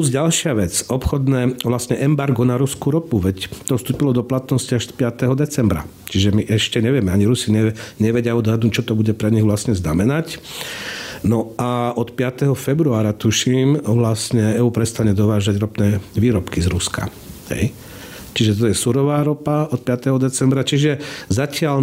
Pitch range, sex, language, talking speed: 105-130 Hz, male, Slovak, 155 wpm